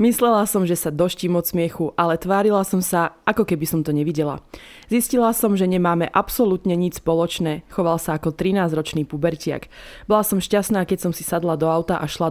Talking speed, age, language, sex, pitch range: 190 wpm, 20-39, Slovak, female, 160-205 Hz